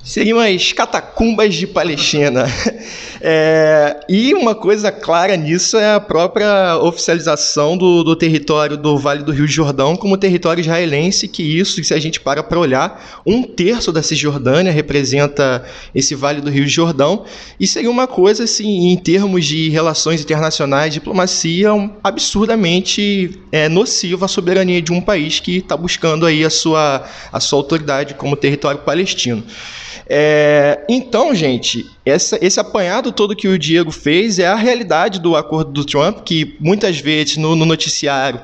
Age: 20-39